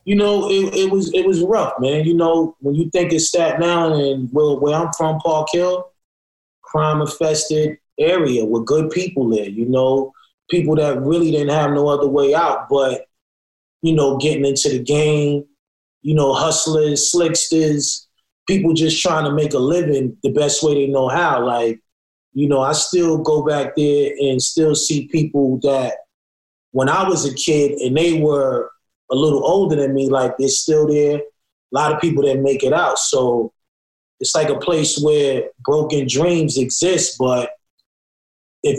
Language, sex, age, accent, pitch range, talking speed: English, male, 20-39, American, 135-155 Hz, 180 wpm